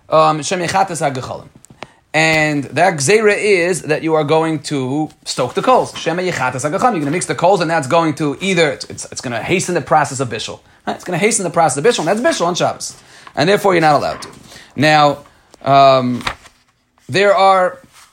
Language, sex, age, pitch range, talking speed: Hebrew, male, 30-49, 140-195 Hz, 180 wpm